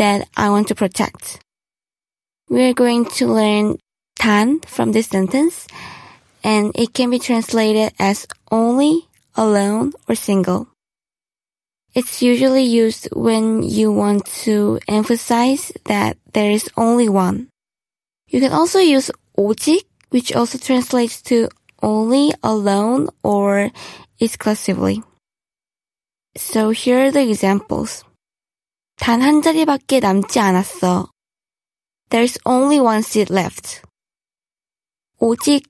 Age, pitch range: 20-39, 210-255 Hz